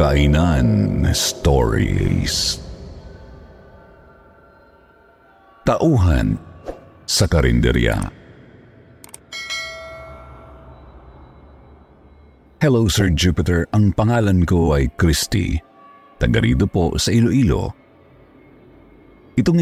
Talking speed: 55 wpm